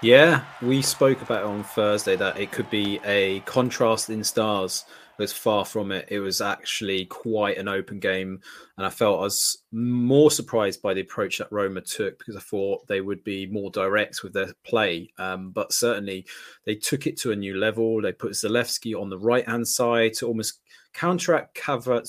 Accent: British